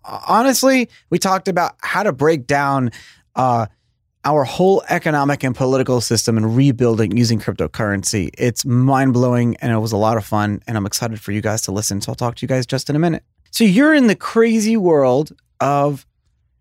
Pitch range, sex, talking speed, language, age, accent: 125-180 Hz, male, 190 wpm, English, 30-49, American